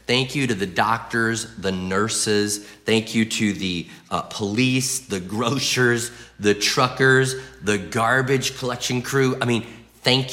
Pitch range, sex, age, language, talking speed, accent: 105-130 Hz, male, 30-49, English, 140 wpm, American